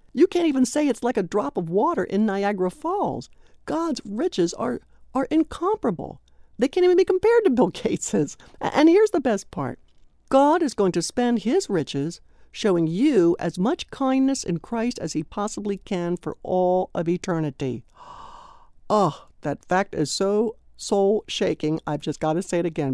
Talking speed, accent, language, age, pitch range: 175 wpm, American, English, 60-79, 165-260 Hz